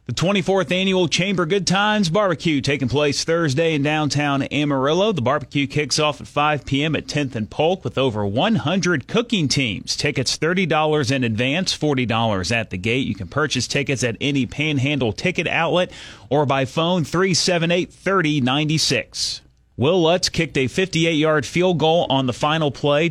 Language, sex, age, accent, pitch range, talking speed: English, male, 30-49, American, 120-165 Hz, 160 wpm